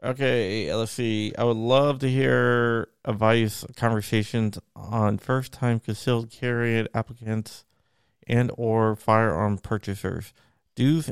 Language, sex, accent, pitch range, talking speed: English, male, American, 105-120 Hz, 110 wpm